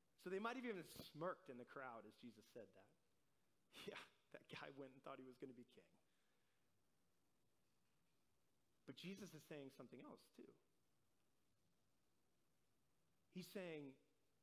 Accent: American